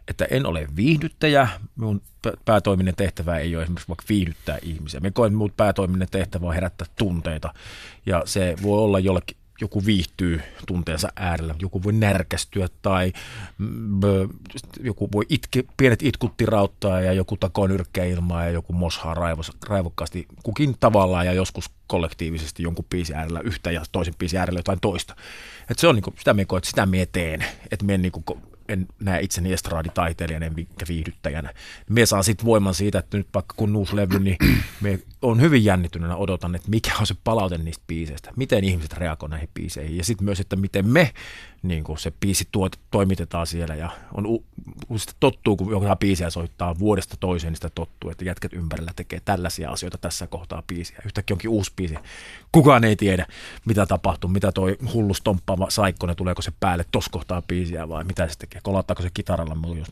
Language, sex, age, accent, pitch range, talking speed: Finnish, male, 30-49, native, 85-105 Hz, 170 wpm